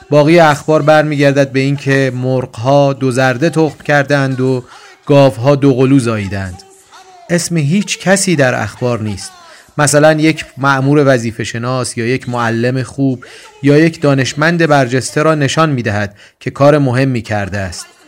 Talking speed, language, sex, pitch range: 145 wpm, Persian, male, 125-155 Hz